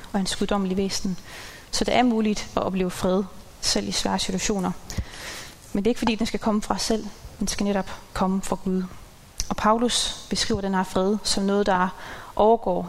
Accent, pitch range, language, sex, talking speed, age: native, 185-220 Hz, Danish, female, 195 wpm, 30-49